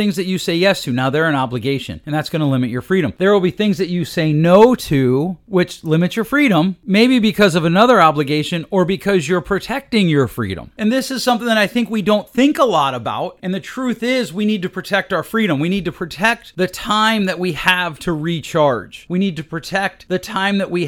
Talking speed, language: 240 wpm, English